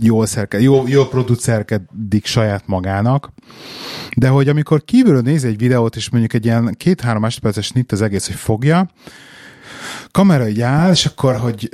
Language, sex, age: Hungarian, male, 30-49